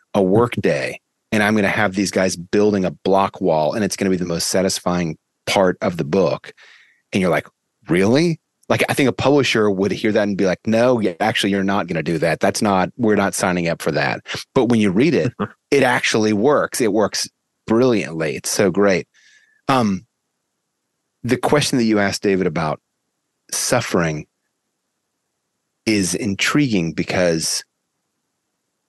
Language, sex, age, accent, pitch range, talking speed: English, male, 30-49, American, 90-110 Hz, 170 wpm